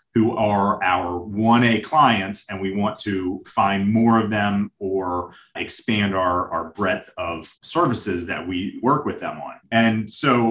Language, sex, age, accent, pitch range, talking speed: English, male, 30-49, American, 100-115 Hz, 160 wpm